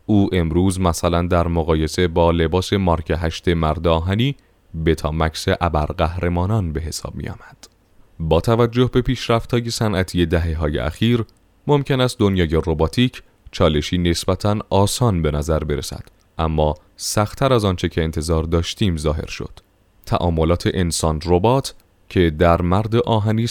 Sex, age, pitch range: male, 30-49, 80-110 Hz